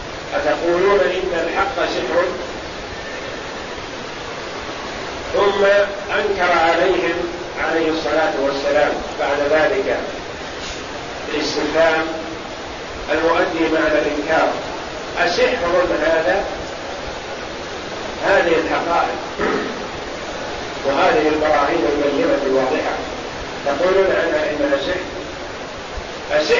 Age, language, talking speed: 50-69, Arabic, 65 wpm